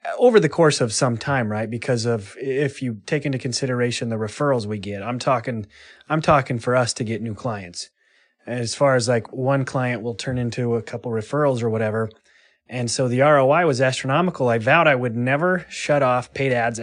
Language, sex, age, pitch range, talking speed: English, male, 30-49, 120-145 Hz, 205 wpm